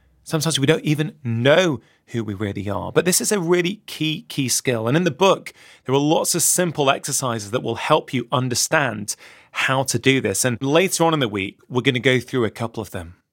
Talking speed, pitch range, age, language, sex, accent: 225 wpm, 120-165 Hz, 30-49, English, male, British